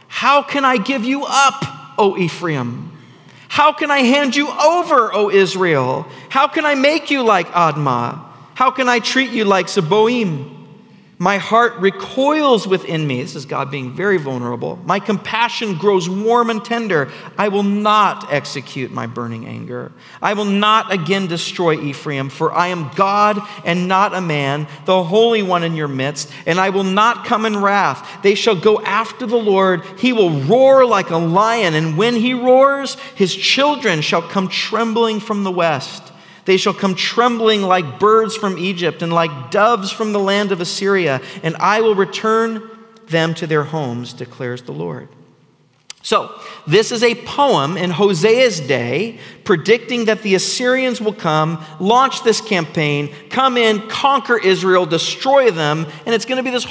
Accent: American